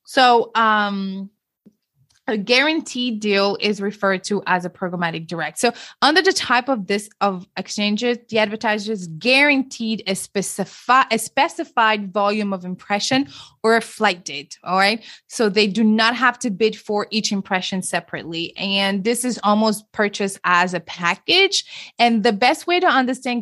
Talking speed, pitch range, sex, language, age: 155 wpm, 195-230 Hz, female, English, 20-39